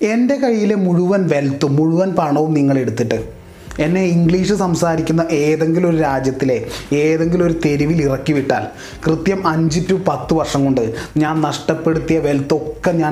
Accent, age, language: native, 30-49, Malayalam